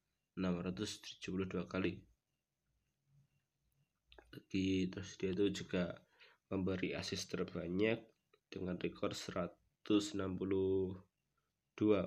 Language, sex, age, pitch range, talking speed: Indonesian, male, 20-39, 95-105 Hz, 65 wpm